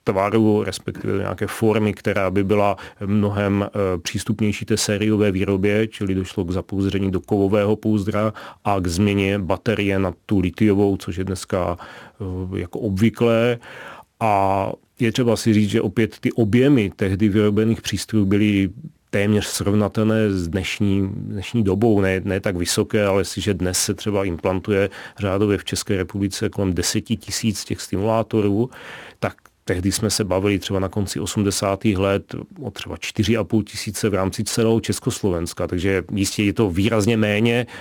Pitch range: 95-110 Hz